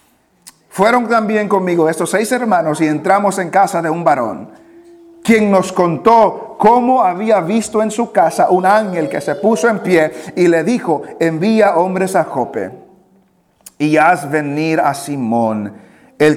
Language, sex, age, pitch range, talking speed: English, male, 50-69, 150-205 Hz, 155 wpm